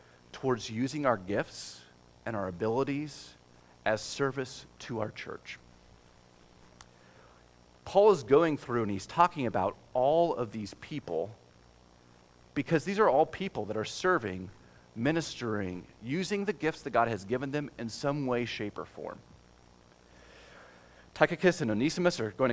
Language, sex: English, male